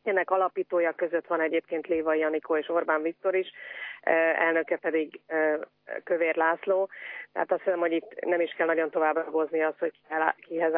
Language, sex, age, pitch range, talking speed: Hungarian, female, 30-49, 160-185 Hz, 155 wpm